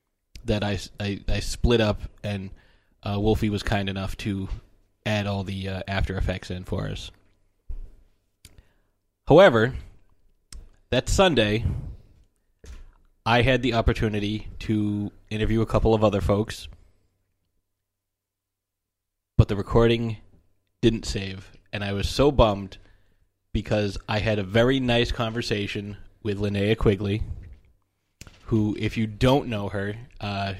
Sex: male